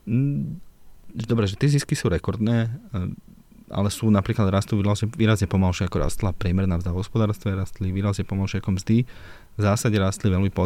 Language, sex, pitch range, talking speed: Slovak, male, 95-110 Hz, 145 wpm